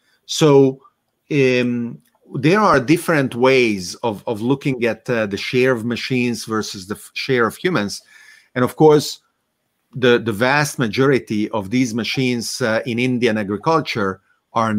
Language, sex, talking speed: English, male, 145 wpm